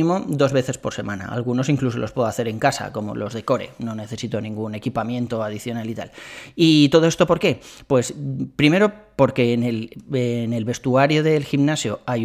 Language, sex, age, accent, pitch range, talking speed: Spanish, male, 30-49, Spanish, 115-145 Hz, 180 wpm